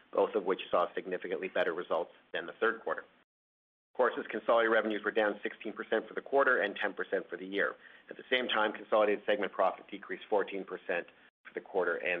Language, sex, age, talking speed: English, male, 50-69, 190 wpm